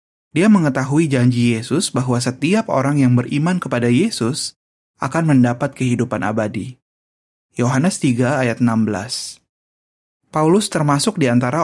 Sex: male